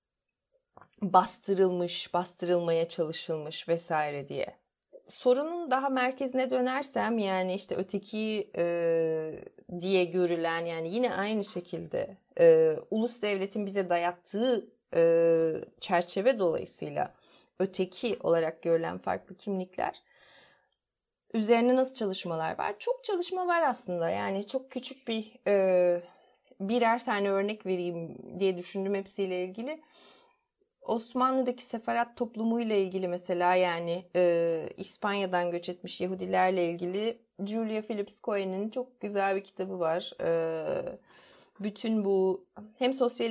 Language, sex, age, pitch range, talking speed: Turkish, female, 30-49, 180-235 Hz, 110 wpm